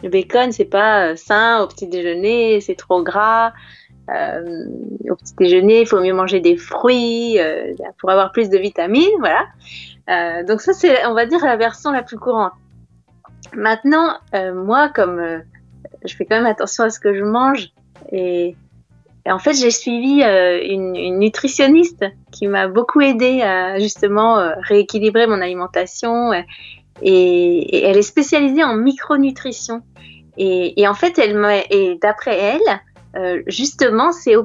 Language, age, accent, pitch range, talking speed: English, 30-49, French, 185-255 Hz, 160 wpm